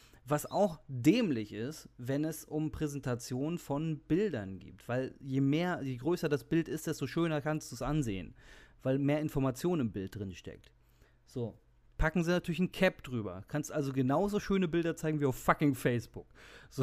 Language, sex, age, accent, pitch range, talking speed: German, male, 30-49, German, 125-170 Hz, 180 wpm